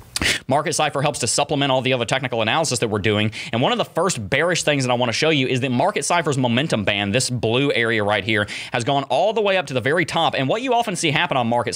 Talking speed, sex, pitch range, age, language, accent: 280 wpm, male, 125-160 Hz, 30-49, English, American